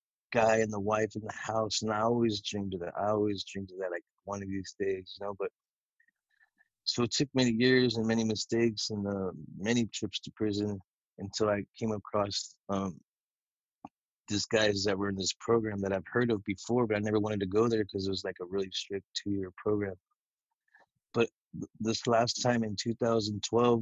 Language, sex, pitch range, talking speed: English, male, 100-115 Hz, 195 wpm